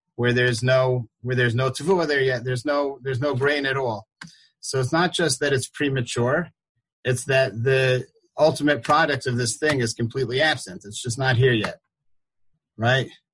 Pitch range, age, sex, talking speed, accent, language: 120-140 Hz, 30-49, male, 175 wpm, American, English